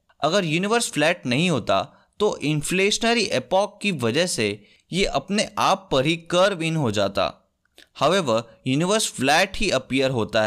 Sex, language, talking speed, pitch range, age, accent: male, Hindi, 150 wpm, 120-195 Hz, 20-39, native